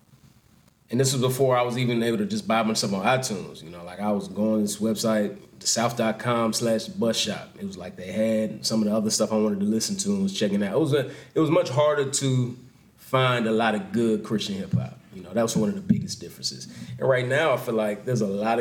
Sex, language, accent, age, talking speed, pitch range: male, English, American, 30-49, 260 wpm, 105-130 Hz